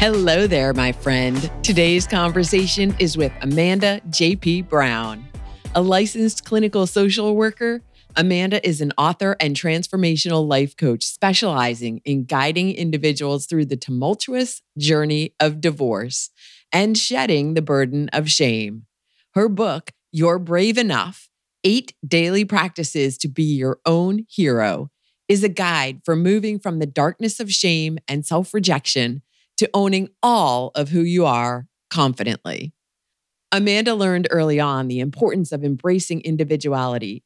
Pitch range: 145-195 Hz